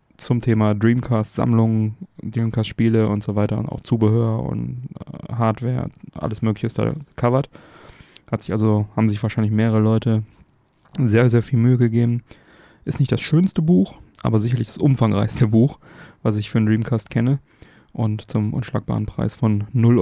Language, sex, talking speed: German, male, 155 wpm